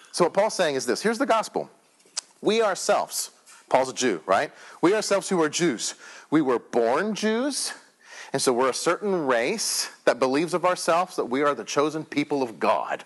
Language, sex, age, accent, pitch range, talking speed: English, male, 40-59, American, 170-265 Hz, 195 wpm